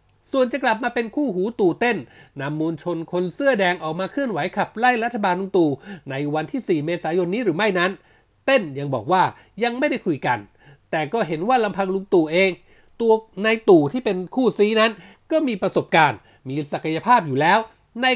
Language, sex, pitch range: Thai, male, 155-220 Hz